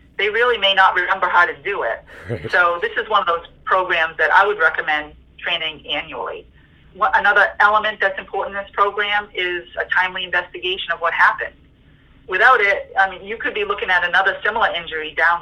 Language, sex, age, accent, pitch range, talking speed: English, female, 30-49, American, 175-225 Hz, 190 wpm